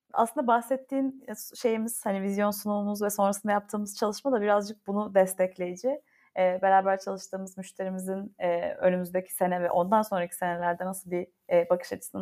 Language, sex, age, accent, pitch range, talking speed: Turkish, female, 30-49, native, 180-205 Hz, 145 wpm